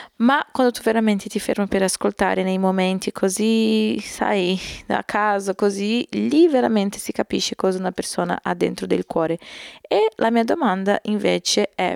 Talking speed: 160 wpm